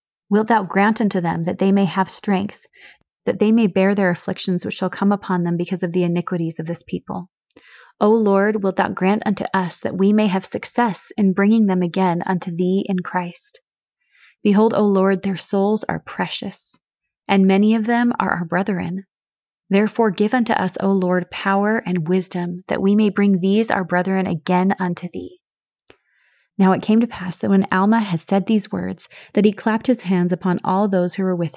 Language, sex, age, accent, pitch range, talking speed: English, female, 30-49, American, 180-210 Hz, 200 wpm